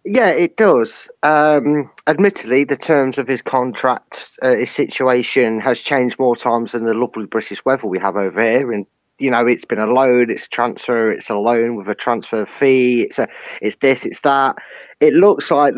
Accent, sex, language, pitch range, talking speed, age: British, male, English, 120-145 Hz, 200 wpm, 20-39